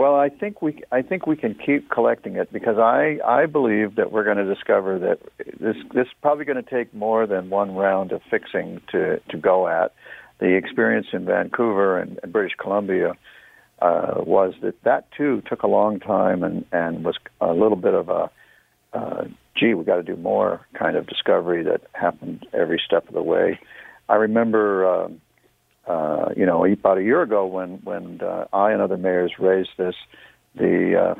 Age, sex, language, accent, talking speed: 60-79, male, English, American, 195 wpm